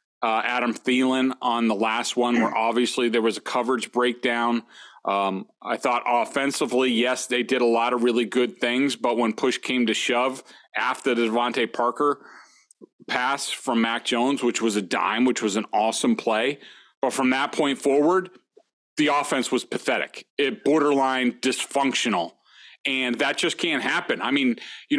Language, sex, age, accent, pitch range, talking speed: English, male, 30-49, American, 120-150 Hz, 170 wpm